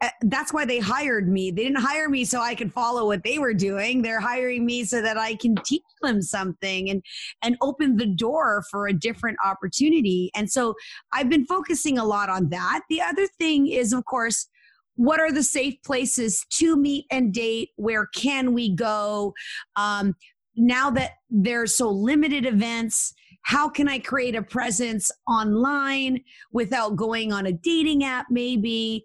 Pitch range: 205-255 Hz